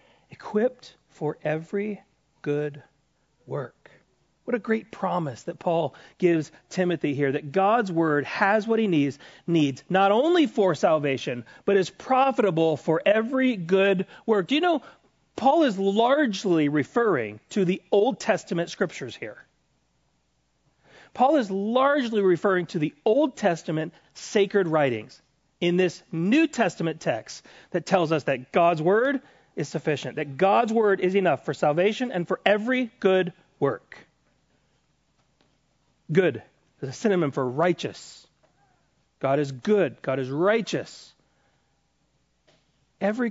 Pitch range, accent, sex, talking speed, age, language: 150-215 Hz, American, male, 130 wpm, 40-59, English